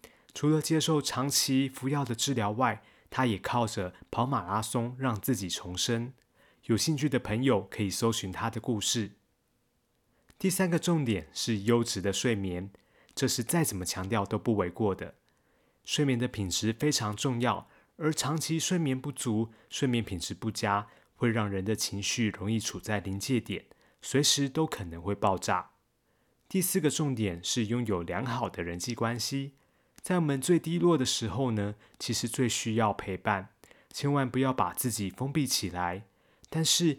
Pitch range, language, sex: 105-140 Hz, Chinese, male